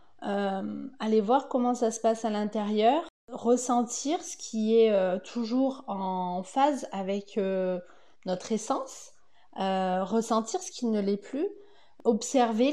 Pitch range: 210-255 Hz